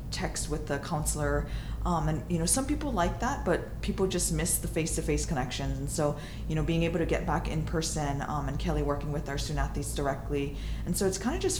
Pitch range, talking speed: 135-165 Hz, 240 wpm